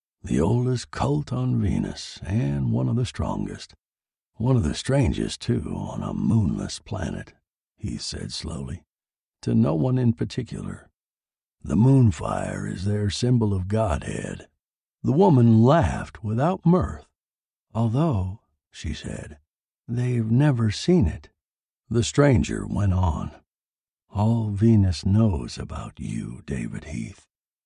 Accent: American